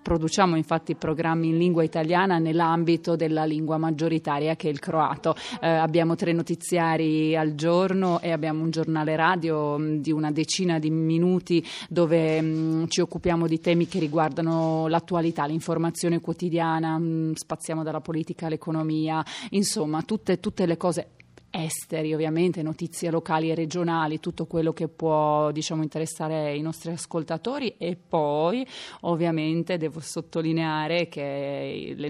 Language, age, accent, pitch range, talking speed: Italian, 30-49, native, 155-170 Hz, 135 wpm